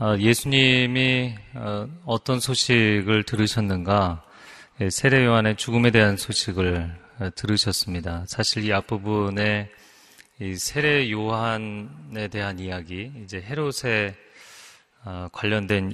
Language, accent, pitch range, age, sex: Korean, native, 95-115 Hz, 30-49, male